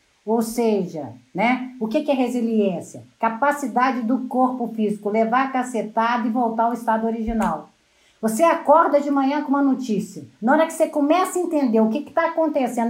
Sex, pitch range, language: female, 235-310 Hz, Portuguese